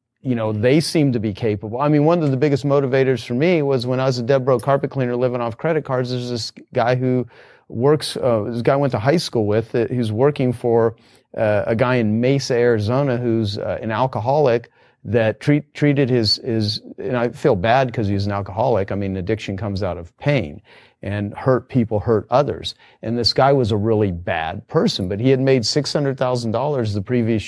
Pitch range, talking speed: 105-135 Hz, 215 wpm